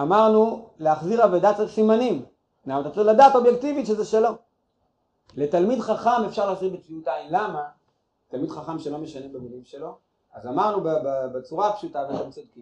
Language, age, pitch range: Hebrew, 40-59, 150-220 Hz